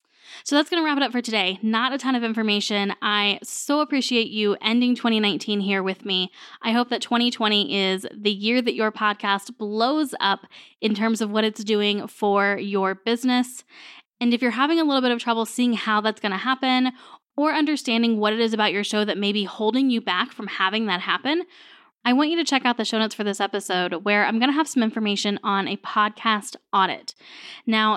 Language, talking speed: English, 215 wpm